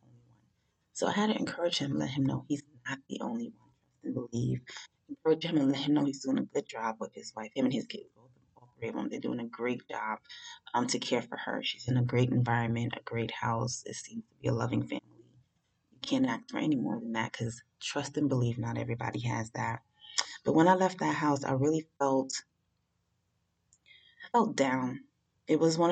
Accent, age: American, 30-49